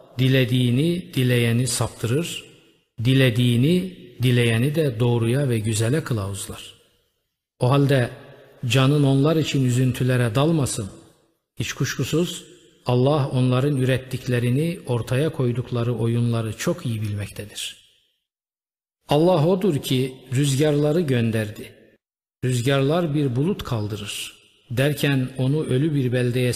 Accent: native